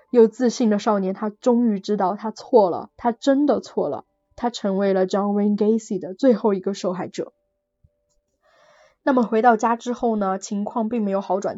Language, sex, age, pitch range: Chinese, female, 20-39, 200-250 Hz